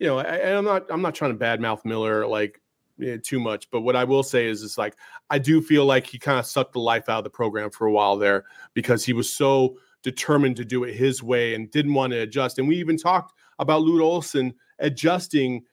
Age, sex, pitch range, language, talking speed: 30-49, male, 125-160 Hz, English, 250 wpm